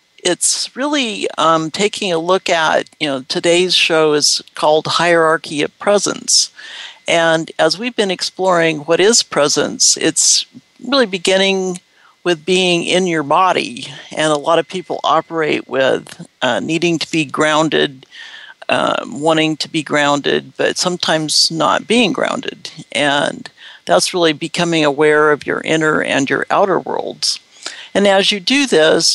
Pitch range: 150-185 Hz